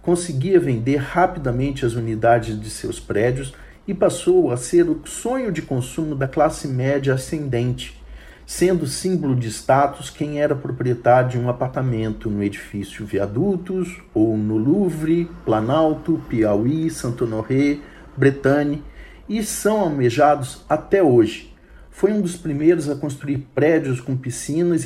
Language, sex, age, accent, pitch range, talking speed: Portuguese, male, 50-69, Brazilian, 120-170 Hz, 135 wpm